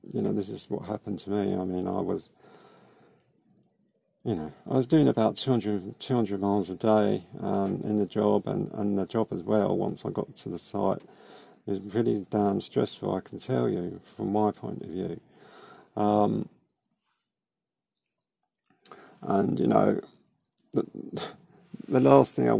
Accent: British